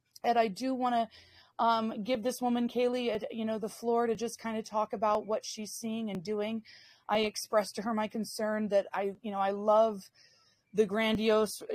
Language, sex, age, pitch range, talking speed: English, female, 30-49, 215-235 Hz, 195 wpm